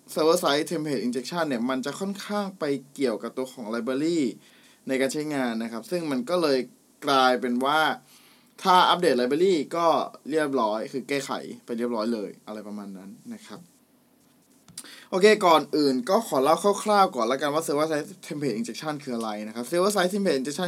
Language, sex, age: Thai, male, 20-39